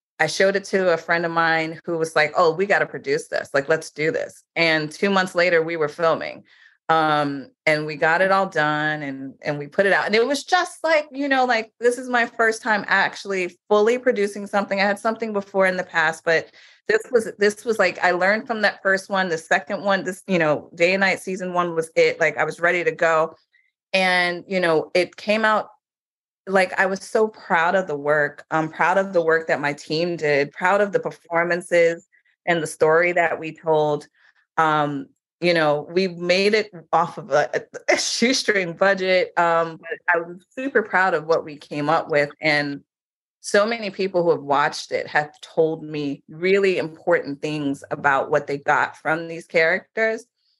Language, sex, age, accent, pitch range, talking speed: English, female, 30-49, American, 160-200 Hz, 205 wpm